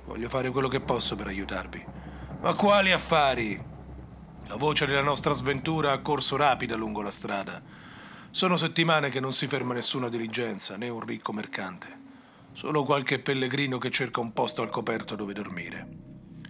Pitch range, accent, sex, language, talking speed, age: 120-155 Hz, native, male, Italian, 160 wpm, 40-59